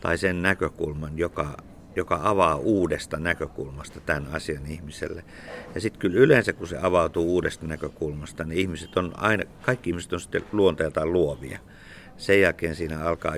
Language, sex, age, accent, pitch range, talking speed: Finnish, male, 50-69, native, 75-85 Hz, 150 wpm